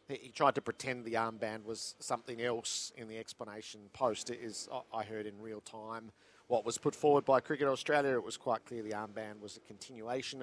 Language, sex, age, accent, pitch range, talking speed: English, male, 50-69, Australian, 105-130 Hz, 205 wpm